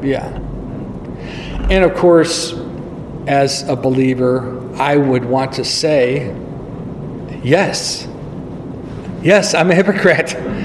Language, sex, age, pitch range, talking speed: English, male, 50-69, 140-185 Hz, 95 wpm